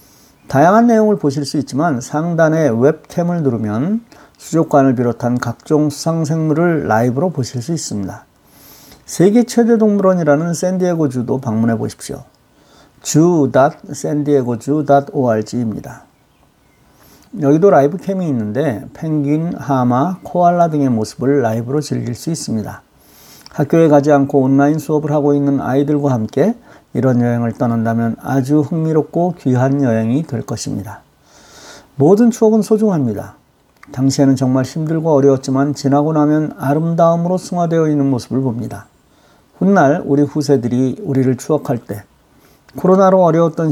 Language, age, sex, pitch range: Korean, 50-69, male, 125-160 Hz